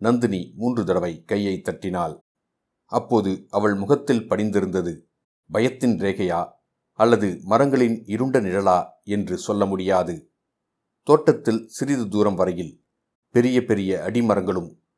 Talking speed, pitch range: 100 wpm, 95-120 Hz